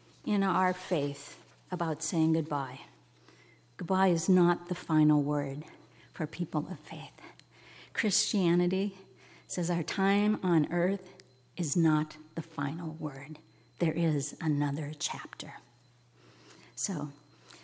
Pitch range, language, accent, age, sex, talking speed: 145-195 Hz, English, American, 50-69, female, 110 wpm